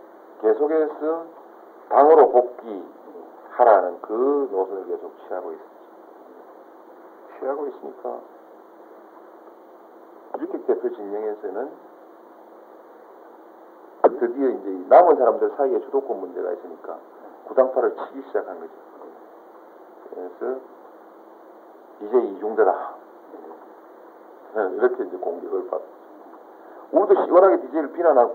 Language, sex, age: Korean, male, 50-69